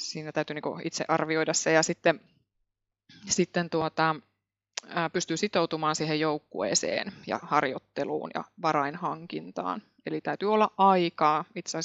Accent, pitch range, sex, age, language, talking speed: native, 150-180 Hz, female, 20-39, Finnish, 110 wpm